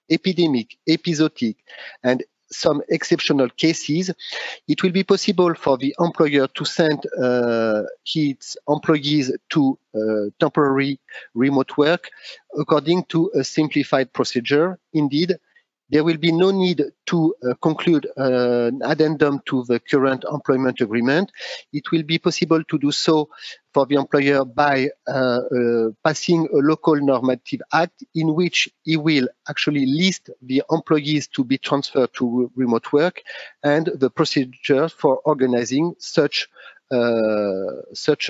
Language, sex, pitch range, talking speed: English, male, 130-165 Hz, 135 wpm